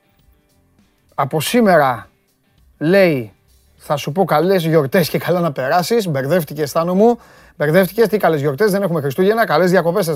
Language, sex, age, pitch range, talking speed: Greek, male, 30-49, 150-210 Hz, 150 wpm